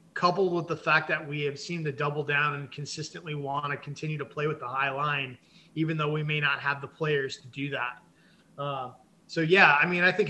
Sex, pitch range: male, 145-180 Hz